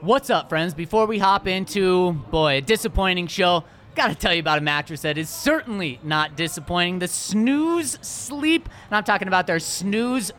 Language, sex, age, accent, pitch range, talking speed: English, male, 30-49, American, 185-275 Hz, 185 wpm